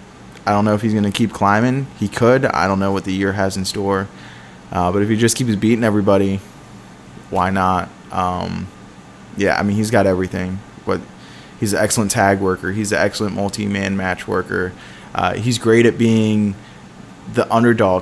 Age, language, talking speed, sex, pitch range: 20-39, English, 185 wpm, male, 95-110 Hz